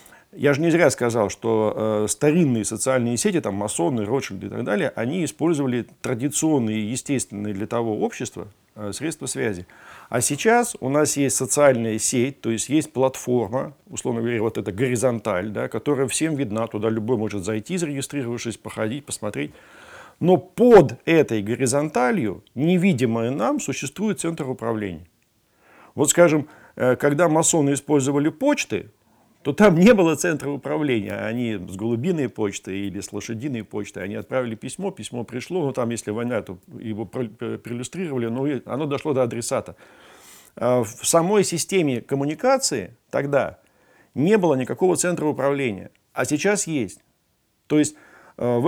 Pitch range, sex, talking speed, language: 115-155 Hz, male, 140 wpm, Russian